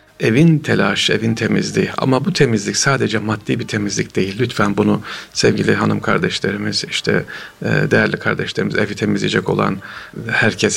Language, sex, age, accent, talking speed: Turkish, male, 40-59, native, 135 wpm